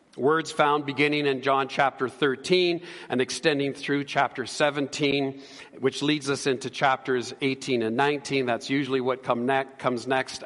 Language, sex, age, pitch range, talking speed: English, male, 50-69, 120-150 Hz, 145 wpm